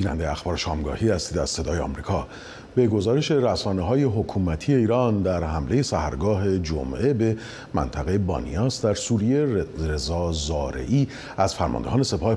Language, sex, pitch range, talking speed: Persian, male, 85-125 Hz, 130 wpm